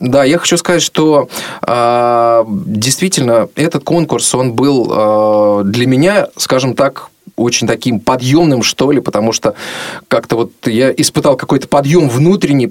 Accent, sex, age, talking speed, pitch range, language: native, male, 20-39, 130 wpm, 110-145 Hz, Russian